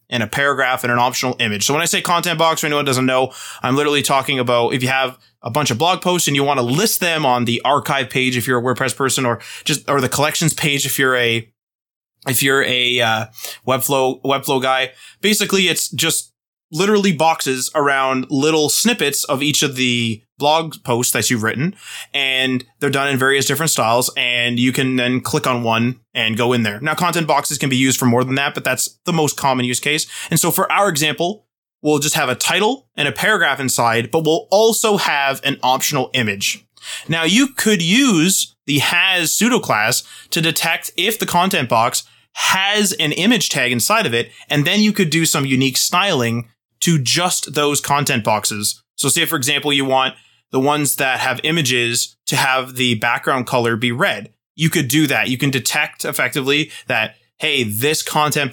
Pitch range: 125-155 Hz